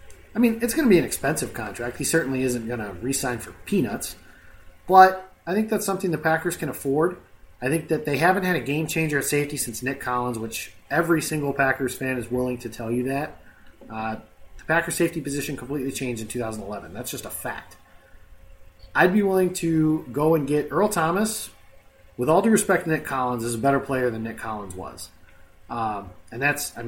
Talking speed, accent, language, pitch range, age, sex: 205 wpm, American, English, 115-155 Hz, 30-49, male